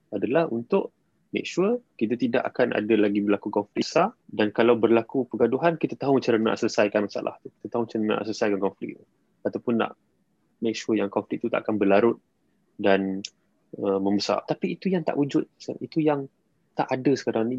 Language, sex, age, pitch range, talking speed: Malay, male, 20-39, 110-155 Hz, 185 wpm